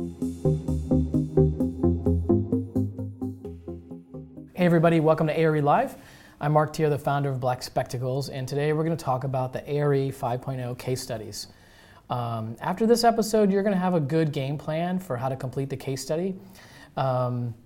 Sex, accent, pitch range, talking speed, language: male, American, 120-145 Hz, 155 wpm, English